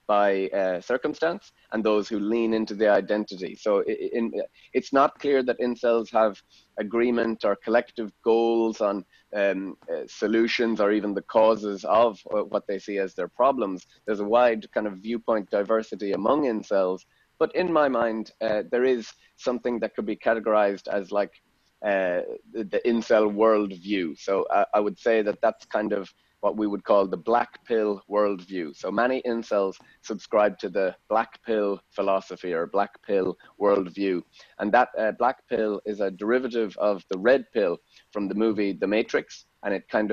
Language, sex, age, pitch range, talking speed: English, male, 30-49, 100-115 Hz, 170 wpm